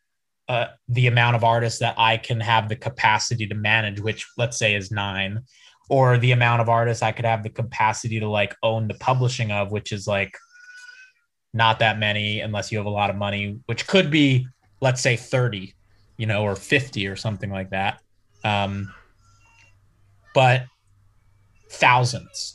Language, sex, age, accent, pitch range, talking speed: English, male, 20-39, American, 105-130 Hz, 170 wpm